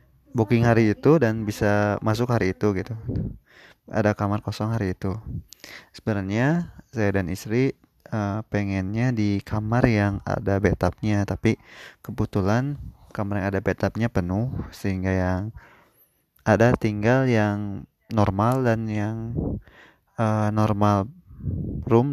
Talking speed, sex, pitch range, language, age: 115 wpm, male, 100-120 Hz, Indonesian, 20-39